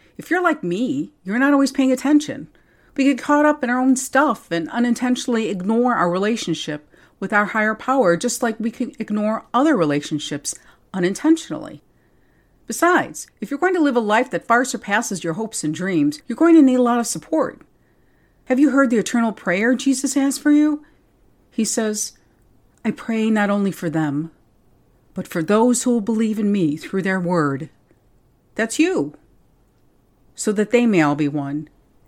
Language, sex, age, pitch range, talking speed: English, female, 50-69, 155-235 Hz, 180 wpm